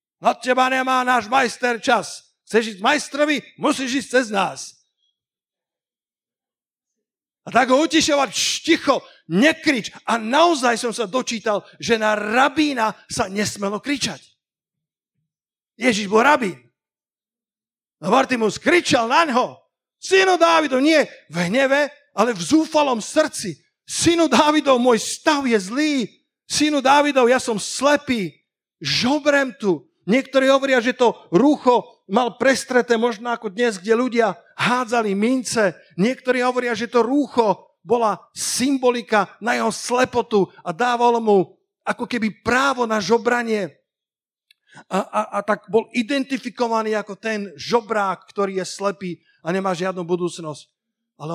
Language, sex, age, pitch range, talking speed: Slovak, male, 50-69, 195-260 Hz, 125 wpm